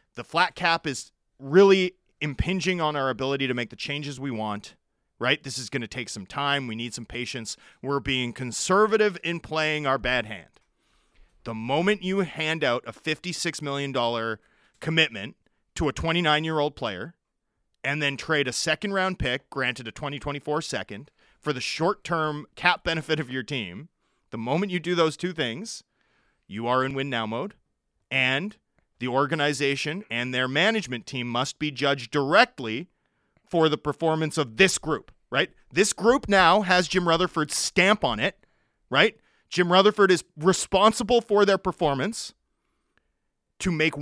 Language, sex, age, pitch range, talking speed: English, male, 30-49, 135-175 Hz, 155 wpm